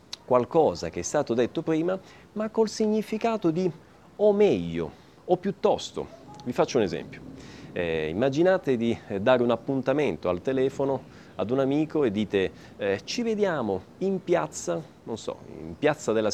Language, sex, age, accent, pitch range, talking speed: Italian, male, 30-49, native, 110-185 Hz, 150 wpm